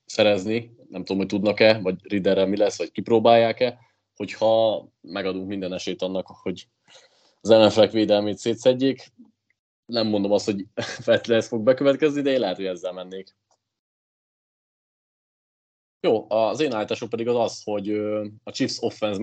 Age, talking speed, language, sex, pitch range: 20-39, 145 wpm, Hungarian, male, 100-115 Hz